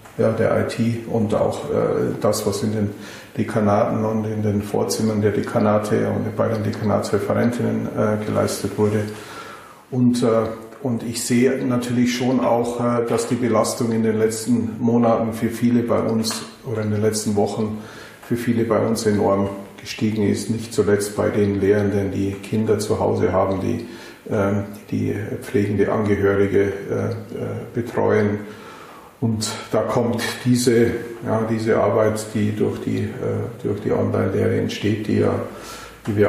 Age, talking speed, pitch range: 50-69, 155 wpm, 105-115 Hz